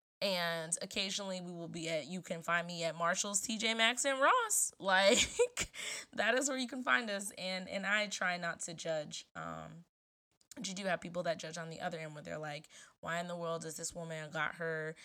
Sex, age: female, 20-39